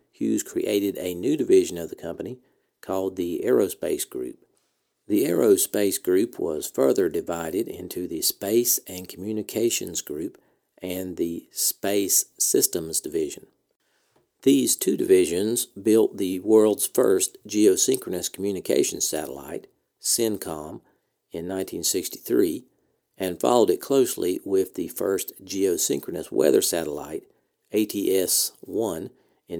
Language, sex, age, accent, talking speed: English, male, 50-69, American, 110 wpm